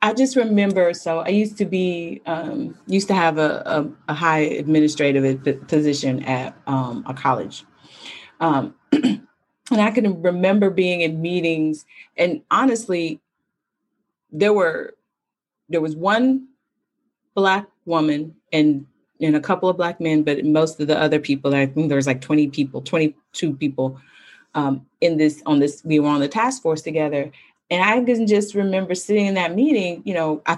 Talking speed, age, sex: 170 wpm, 30-49, female